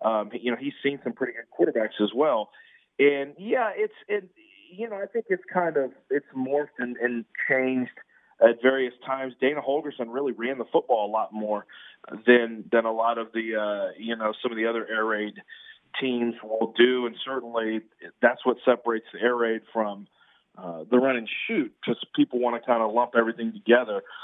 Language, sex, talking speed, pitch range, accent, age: English, male, 200 wpm, 120-150 Hz, American, 40-59